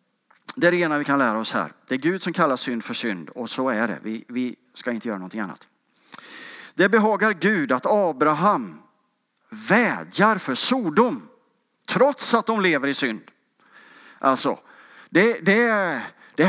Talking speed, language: 165 wpm, English